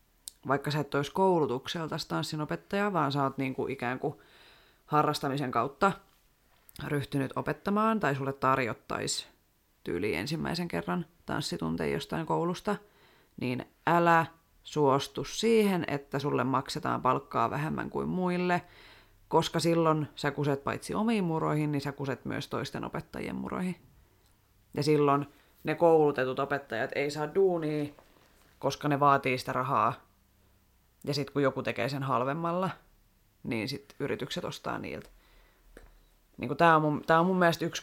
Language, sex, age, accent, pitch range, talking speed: Finnish, female, 30-49, native, 130-165 Hz, 130 wpm